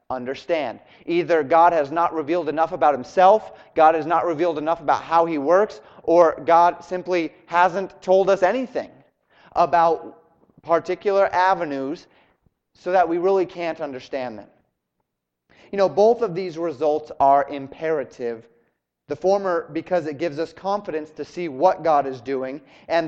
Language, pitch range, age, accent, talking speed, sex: English, 150-190 Hz, 30-49, American, 150 wpm, male